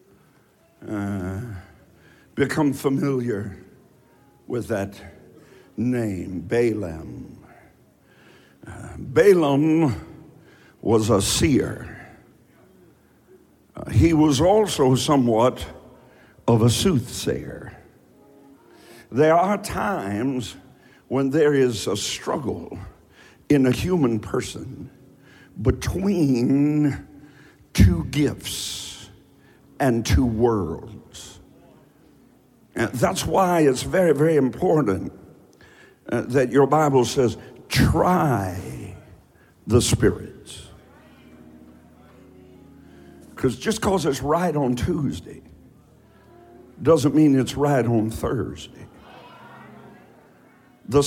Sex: male